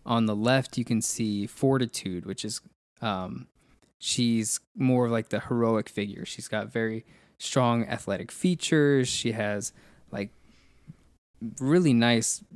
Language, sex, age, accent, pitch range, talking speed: English, male, 20-39, American, 110-130 Hz, 130 wpm